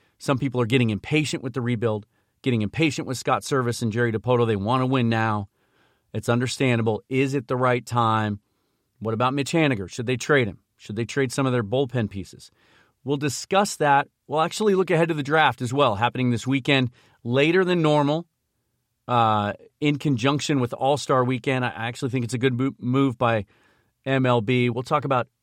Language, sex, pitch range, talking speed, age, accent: English, male, 110-135 Hz, 190 wpm, 40-59, American